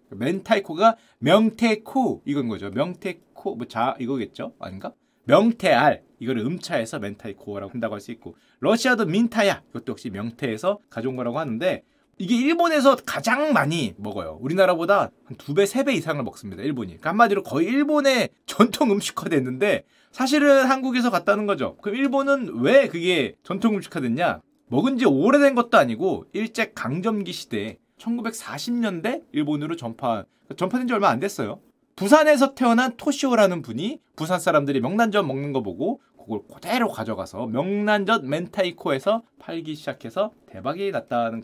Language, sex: Korean, male